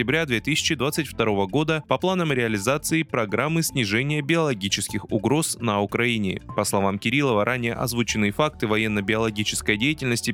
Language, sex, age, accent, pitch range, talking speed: Russian, male, 20-39, native, 110-155 Hz, 110 wpm